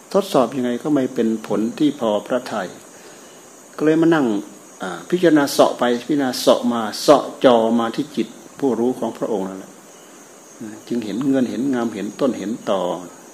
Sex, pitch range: male, 110-130 Hz